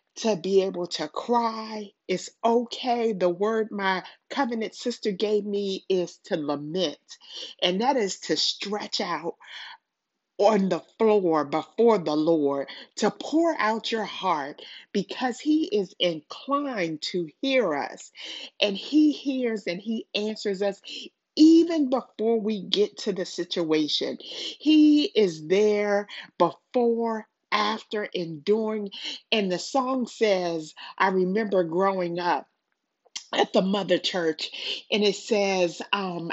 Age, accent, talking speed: 40-59, American, 125 wpm